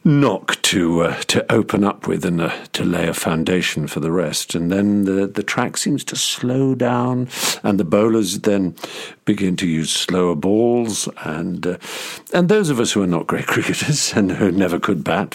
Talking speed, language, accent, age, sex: 195 wpm, English, British, 50-69, male